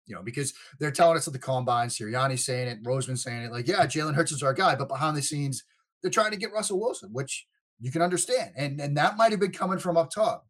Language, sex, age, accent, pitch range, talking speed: English, male, 30-49, American, 120-170 Hz, 265 wpm